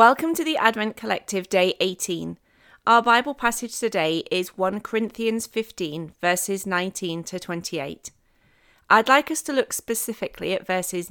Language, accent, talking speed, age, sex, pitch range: English, British, 145 wpm, 30-49, female, 160-220 Hz